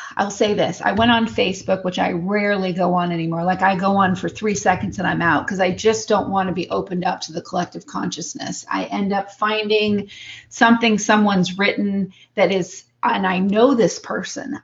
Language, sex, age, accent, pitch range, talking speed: English, female, 30-49, American, 185-225 Hz, 205 wpm